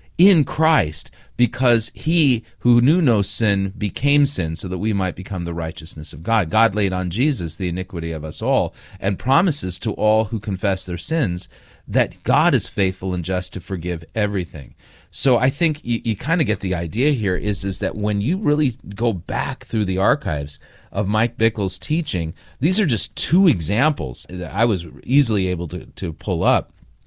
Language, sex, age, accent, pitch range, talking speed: English, male, 30-49, American, 90-120 Hz, 190 wpm